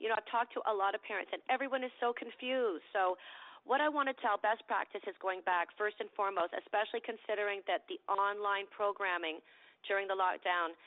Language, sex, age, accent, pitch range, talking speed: English, female, 40-59, American, 185-220 Hz, 205 wpm